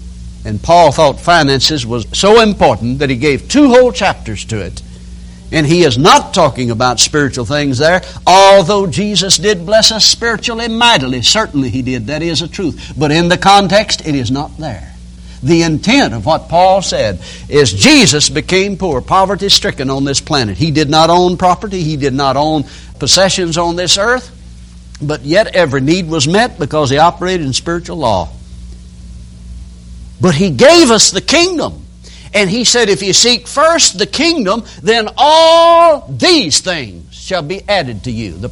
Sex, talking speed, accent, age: male, 175 wpm, American, 60-79